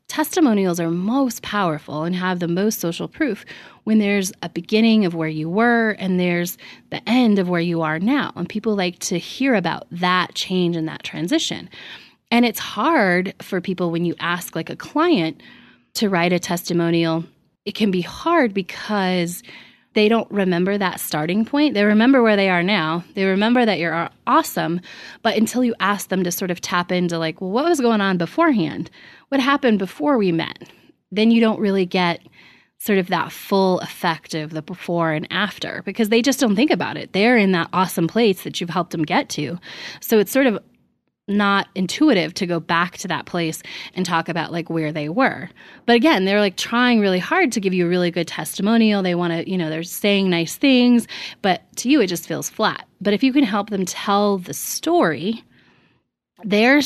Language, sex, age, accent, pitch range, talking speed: English, female, 20-39, American, 175-225 Hz, 200 wpm